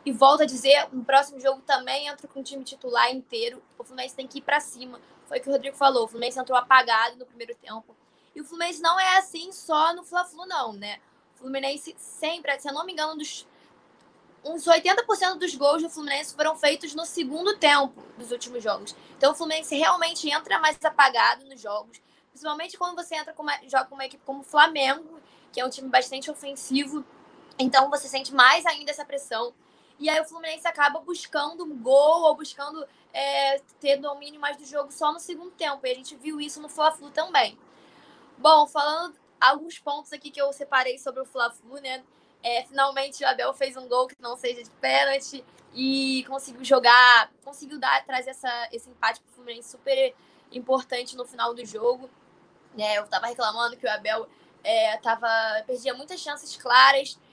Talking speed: 195 wpm